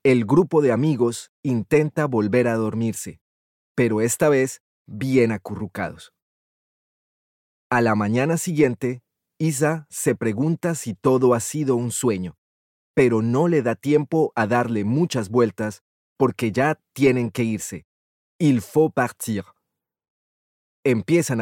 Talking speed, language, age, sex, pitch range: 125 wpm, Spanish, 30-49, male, 110-145 Hz